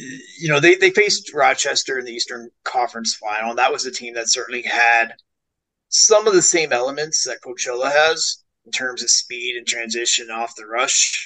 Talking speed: 190 wpm